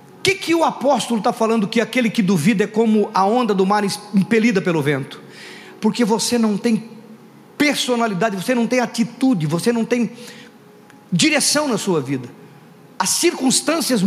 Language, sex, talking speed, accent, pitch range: Portuguese, male, 160 wpm, Brazilian, 200-280 Hz